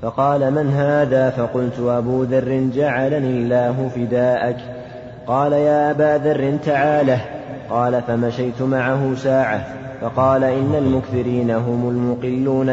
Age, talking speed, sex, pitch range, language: 30-49, 110 wpm, male, 120-135 Hz, Arabic